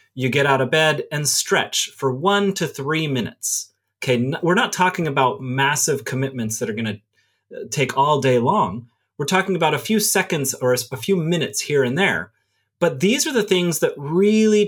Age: 30-49